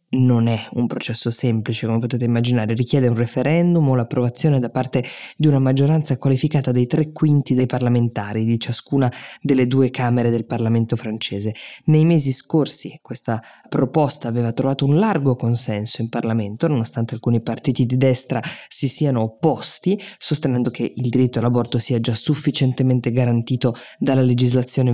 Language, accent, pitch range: Italian, native, 120-140 Hz